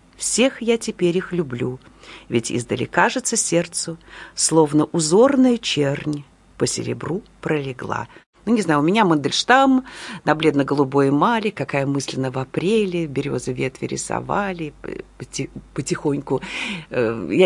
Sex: female